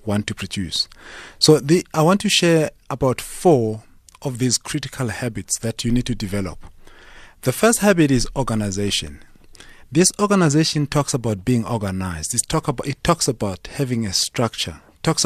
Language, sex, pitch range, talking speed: English, male, 110-155 Hz, 160 wpm